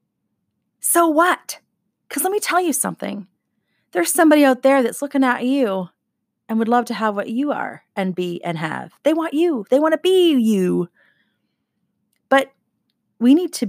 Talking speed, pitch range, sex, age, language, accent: 175 wpm, 190-260 Hz, female, 30-49, English, American